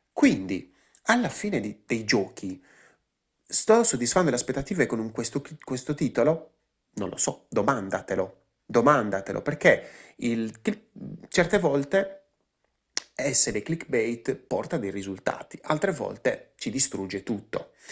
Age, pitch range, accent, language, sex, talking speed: 30-49, 100-150 Hz, native, Italian, male, 110 wpm